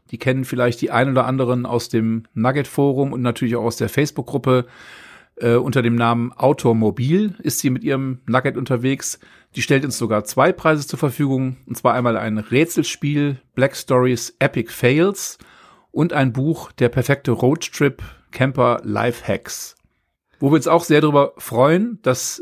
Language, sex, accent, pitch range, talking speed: German, male, German, 115-140 Hz, 165 wpm